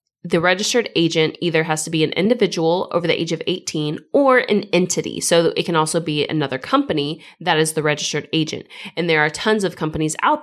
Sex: female